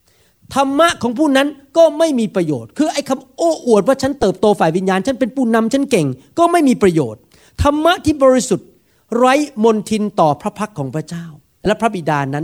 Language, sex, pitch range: Thai, male, 140-215 Hz